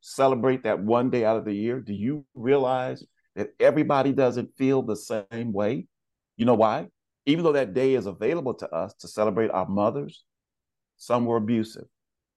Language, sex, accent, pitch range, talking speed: English, male, American, 105-130 Hz, 175 wpm